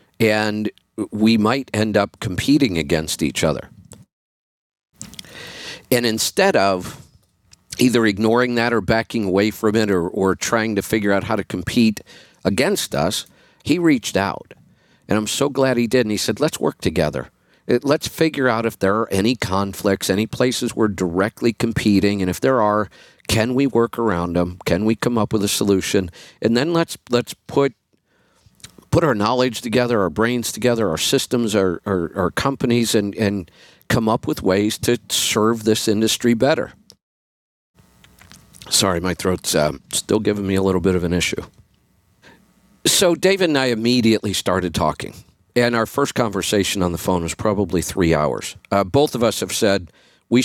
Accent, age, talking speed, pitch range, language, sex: American, 50-69, 170 wpm, 95-120 Hz, English, male